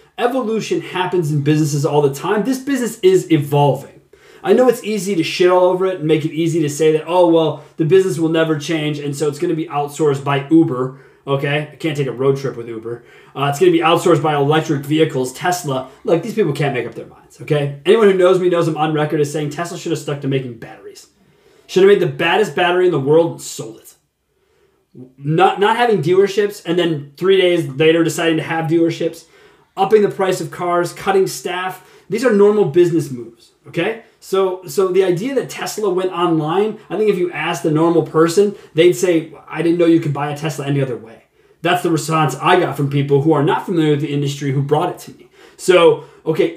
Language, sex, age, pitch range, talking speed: English, male, 30-49, 150-185 Hz, 230 wpm